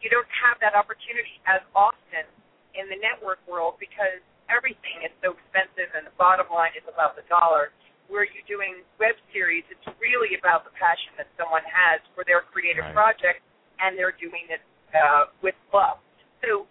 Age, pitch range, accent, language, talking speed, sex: 50-69, 170-230 Hz, American, English, 175 wpm, female